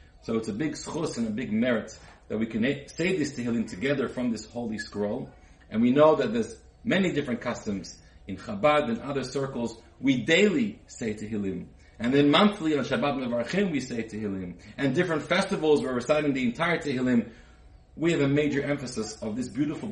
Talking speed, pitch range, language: 185 wpm, 110-165 Hz, English